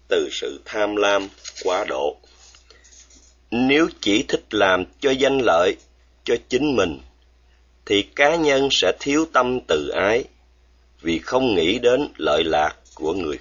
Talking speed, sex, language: 145 wpm, male, Vietnamese